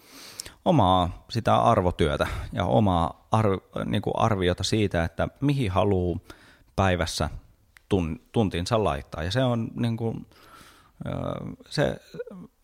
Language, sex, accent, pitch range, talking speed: Finnish, male, native, 90-120 Hz, 105 wpm